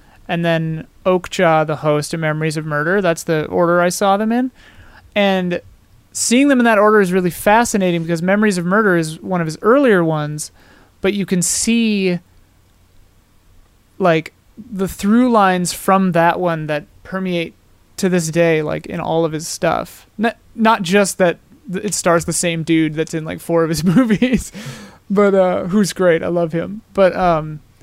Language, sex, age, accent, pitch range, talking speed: English, male, 30-49, American, 155-195 Hz, 175 wpm